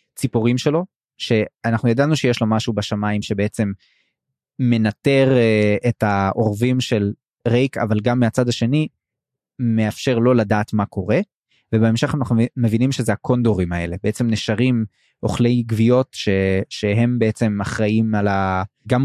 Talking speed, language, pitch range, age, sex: 130 wpm, Hebrew, 110-130 Hz, 20-39, male